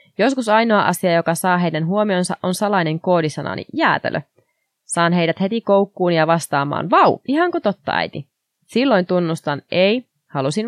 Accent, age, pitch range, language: native, 20-39, 160-200 Hz, Finnish